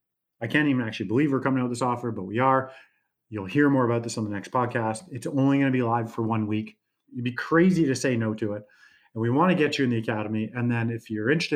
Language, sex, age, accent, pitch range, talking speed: English, male, 30-49, American, 115-140 Hz, 280 wpm